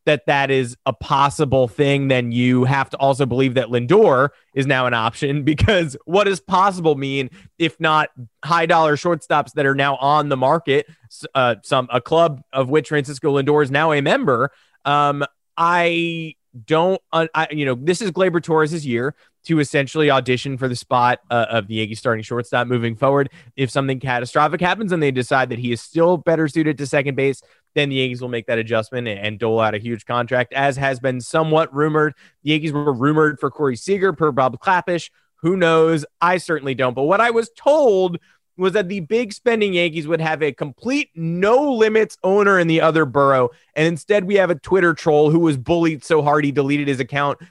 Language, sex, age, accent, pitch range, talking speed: English, male, 30-49, American, 135-170 Hz, 200 wpm